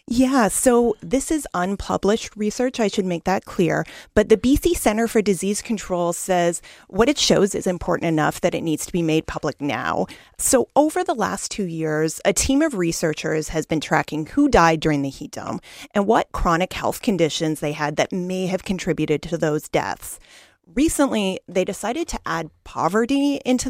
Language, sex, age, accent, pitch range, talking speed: English, female, 30-49, American, 165-230 Hz, 185 wpm